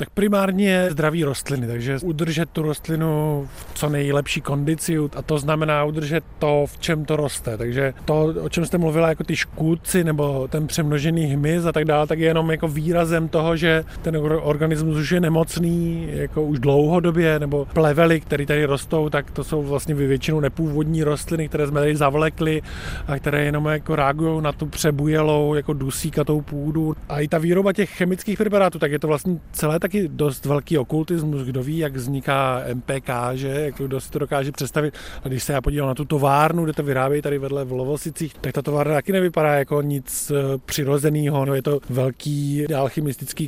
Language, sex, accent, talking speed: Czech, male, native, 185 wpm